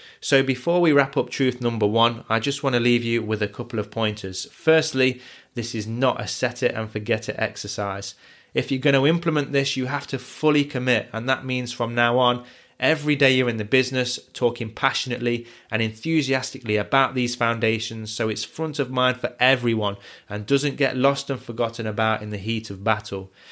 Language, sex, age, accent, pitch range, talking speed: English, male, 20-39, British, 110-135 Hz, 200 wpm